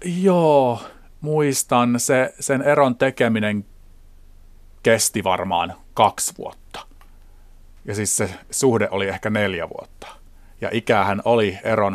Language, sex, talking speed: Finnish, male, 110 wpm